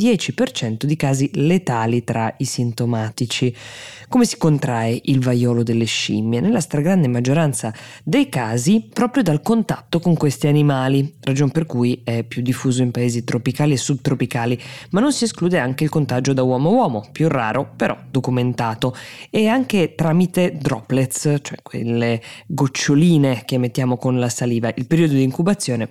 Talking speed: 155 wpm